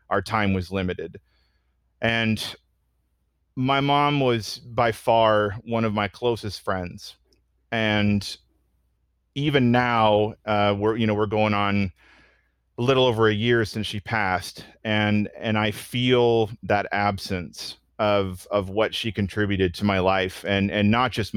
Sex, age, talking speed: male, 30-49, 145 wpm